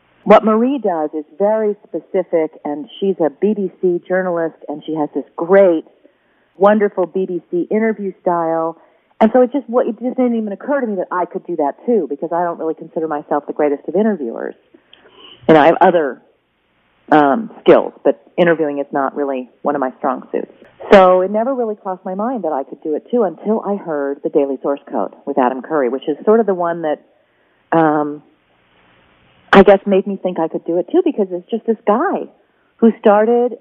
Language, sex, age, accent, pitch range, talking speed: English, female, 40-59, American, 160-220 Hz, 200 wpm